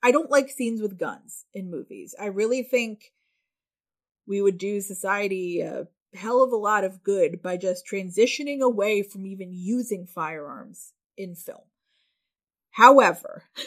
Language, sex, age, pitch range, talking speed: English, female, 30-49, 190-235 Hz, 145 wpm